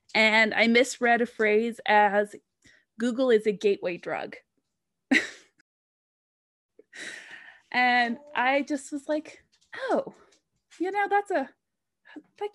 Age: 20-39